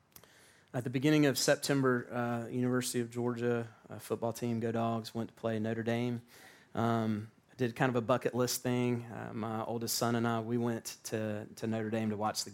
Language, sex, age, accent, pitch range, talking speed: English, male, 30-49, American, 115-140 Hz, 200 wpm